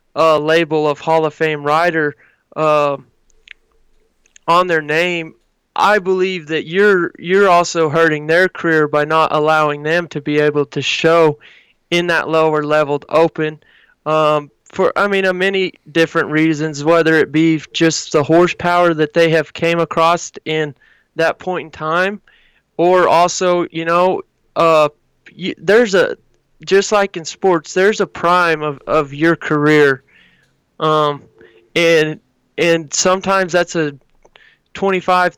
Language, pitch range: English, 155-180 Hz